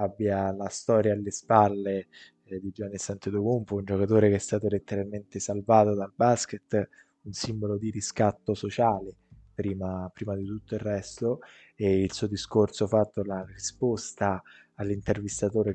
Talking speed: 140 wpm